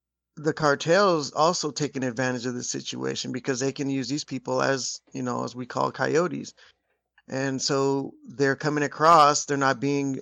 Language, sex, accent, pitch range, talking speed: English, male, American, 125-145 Hz, 170 wpm